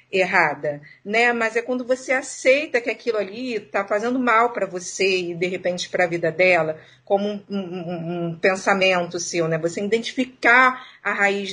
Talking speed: 170 wpm